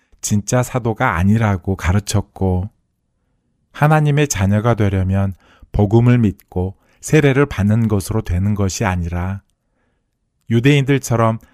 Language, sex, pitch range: Korean, male, 100-120 Hz